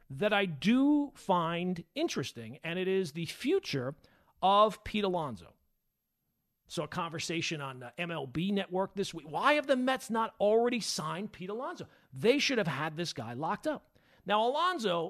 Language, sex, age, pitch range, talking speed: English, male, 40-59, 145-200 Hz, 165 wpm